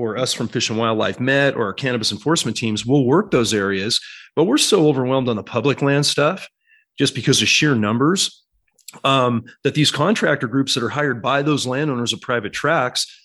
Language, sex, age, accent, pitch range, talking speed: English, male, 30-49, American, 115-135 Hz, 200 wpm